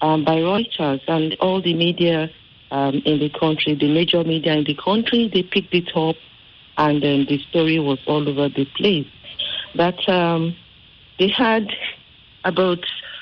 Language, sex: English, female